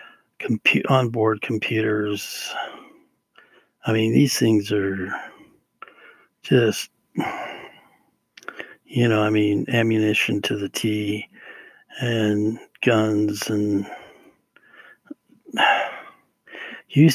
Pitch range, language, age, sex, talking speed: 105-130 Hz, English, 60-79, male, 75 wpm